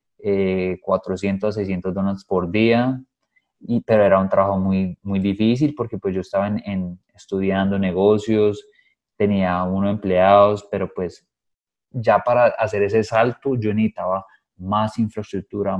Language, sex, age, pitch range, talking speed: Spanish, male, 20-39, 100-110 Hz, 135 wpm